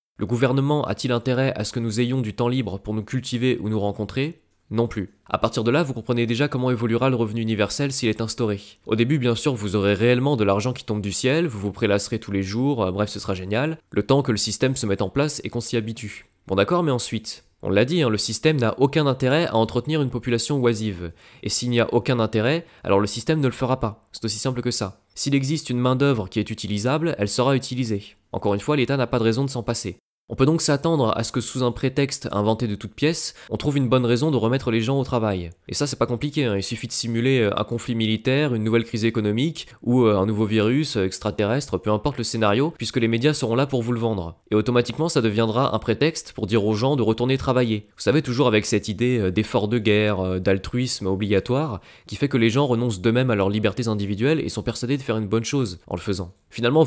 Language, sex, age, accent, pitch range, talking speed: English, male, 20-39, French, 105-130 Hz, 250 wpm